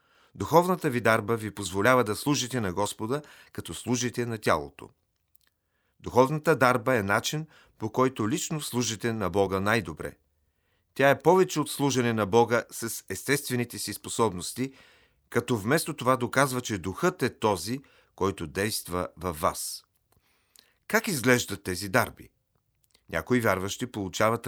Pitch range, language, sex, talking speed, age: 100-135 Hz, Bulgarian, male, 130 wpm, 40-59